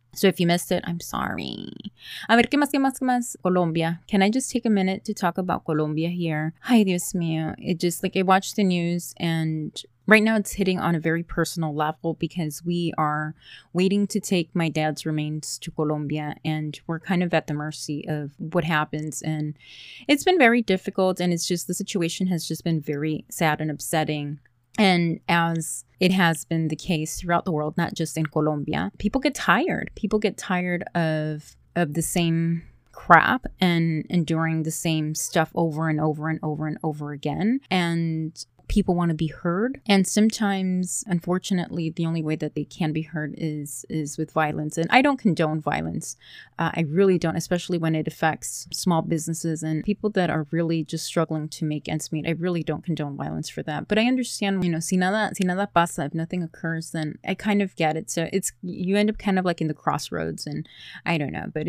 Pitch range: 155-185 Hz